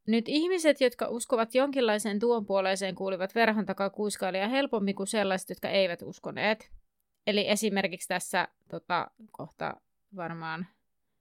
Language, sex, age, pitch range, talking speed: Finnish, female, 30-49, 190-235 Hz, 125 wpm